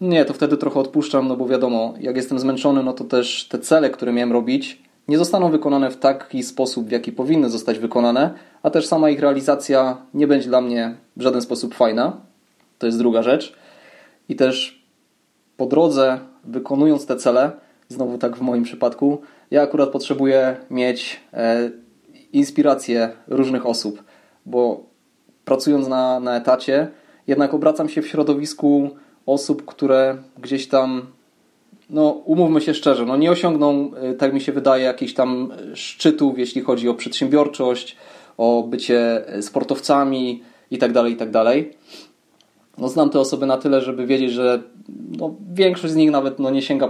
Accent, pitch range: native, 125-150 Hz